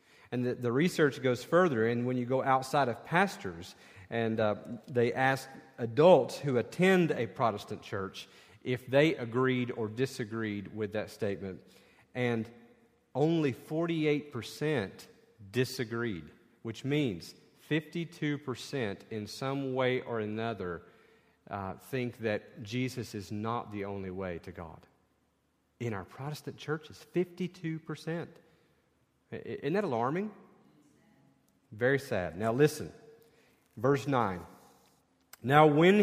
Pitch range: 115-160 Hz